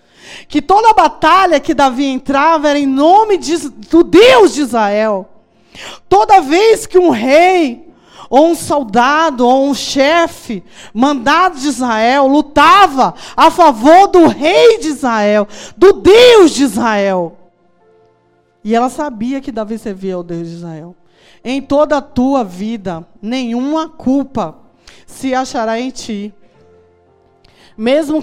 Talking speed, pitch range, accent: 130 wpm, 225-300 Hz, Brazilian